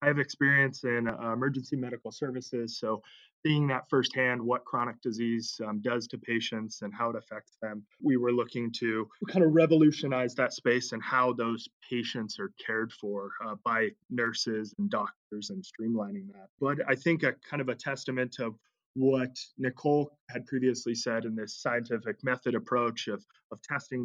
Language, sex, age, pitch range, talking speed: English, male, 20-39, 115-130 Hz, 175 wpm